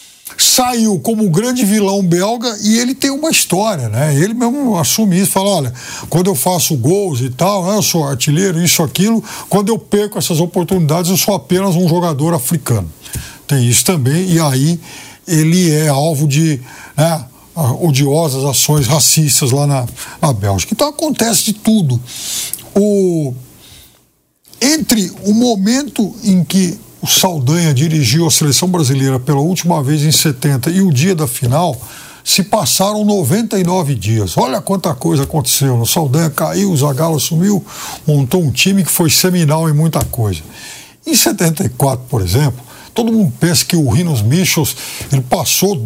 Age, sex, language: 60-79, male, Portuguese